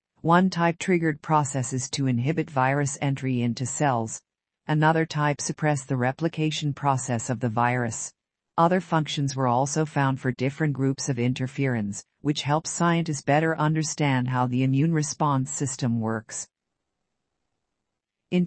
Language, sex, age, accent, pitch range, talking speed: English, female, 50-69, American, 125-155 Hz, 135 wpm